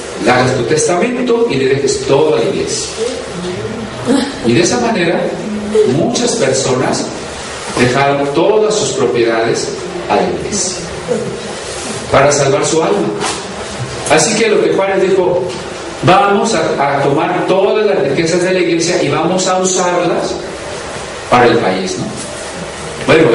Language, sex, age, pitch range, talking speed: Spanish, male, 40-59, 150-215 Hz, 130 wpm